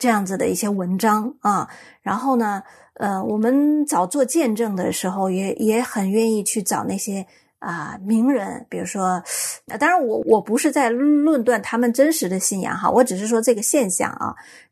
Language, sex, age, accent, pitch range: Chinese, female, 30-49, native, 215-300 Hz